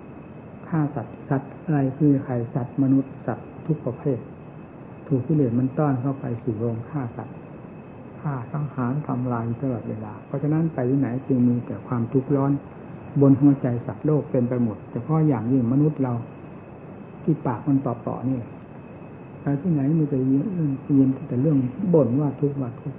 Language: Thai